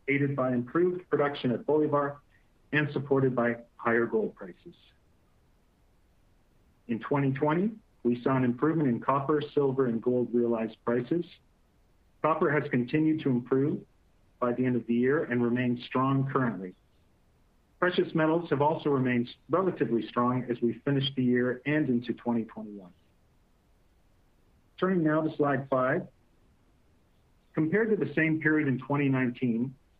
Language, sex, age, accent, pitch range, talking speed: English, male, 50-69, American, 120-150 Hz, 135 wpm